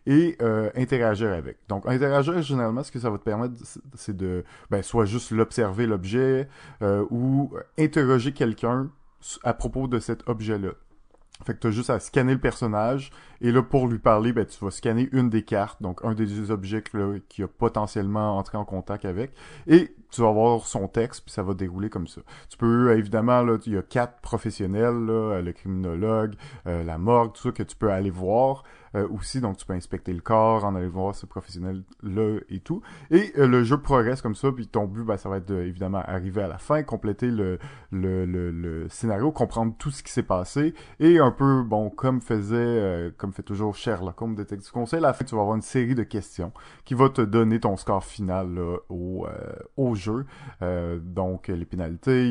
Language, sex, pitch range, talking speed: French, male, 100-125 Hz, 215 wpm